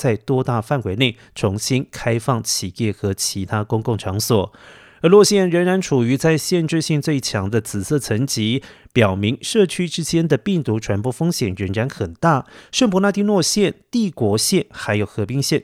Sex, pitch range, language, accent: male, 110-155 Hz, Chinese, native